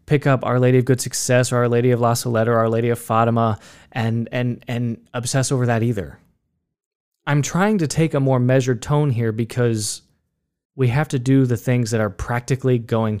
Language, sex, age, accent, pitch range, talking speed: English, male, 20-39, American, 105-130 Hz, 205 wpm